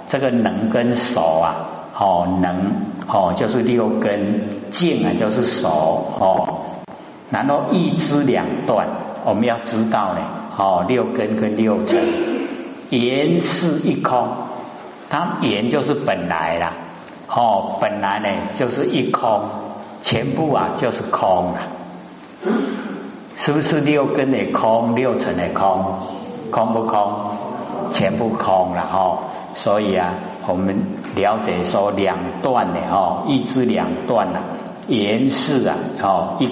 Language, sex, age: Chinese, male, 60-79